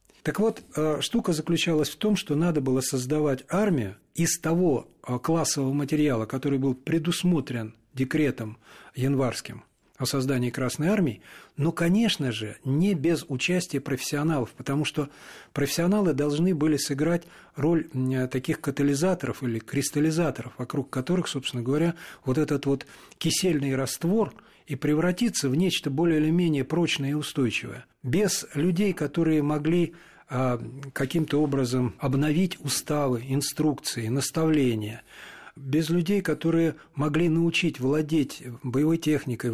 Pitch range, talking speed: 135-165 Hz, 120 wpm